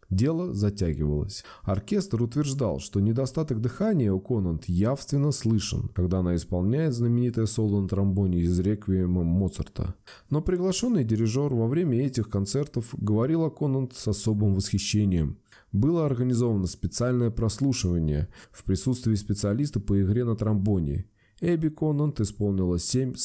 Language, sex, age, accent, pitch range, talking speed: Russian, male, 20-39, native, 95-125 Hz, 125 wpm